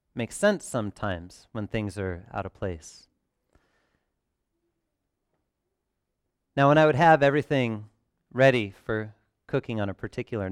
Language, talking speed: English, 120 wpm